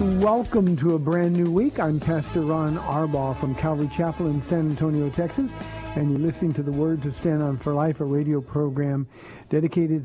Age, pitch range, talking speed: 50-69, 140-170 Hz, 190 wpm